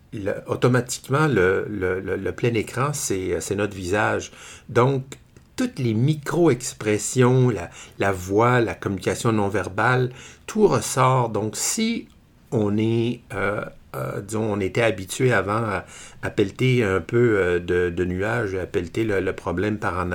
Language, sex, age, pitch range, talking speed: French, male, 60-79, 95-125 Hz, 150 wpm